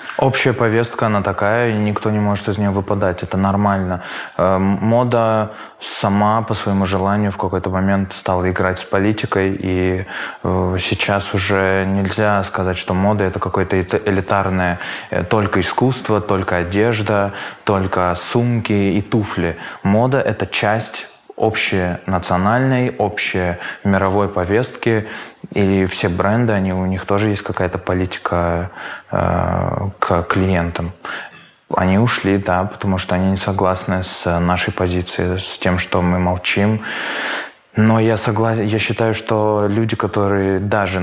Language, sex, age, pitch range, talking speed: Russian, male, 20-39, 90-105 Hz, 125 wpm